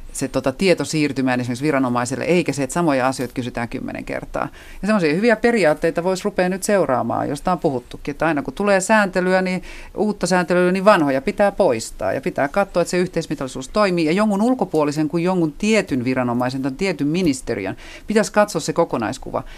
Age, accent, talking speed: 40-59, native, 180 wpm